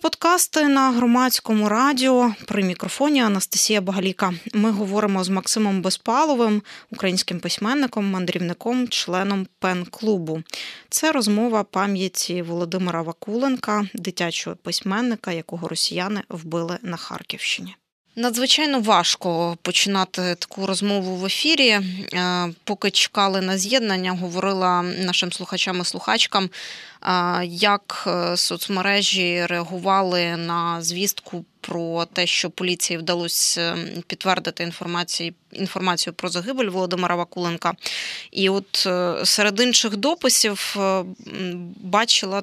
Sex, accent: female, native